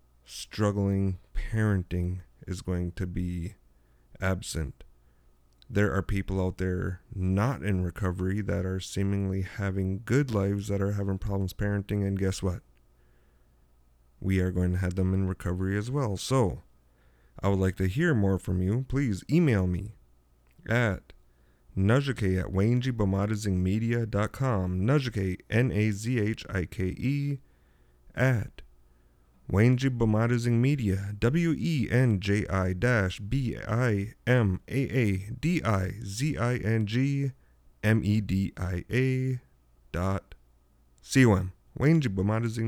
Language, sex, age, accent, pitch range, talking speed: English, male, 30-49, American, 90-110 Hz, 120 wpm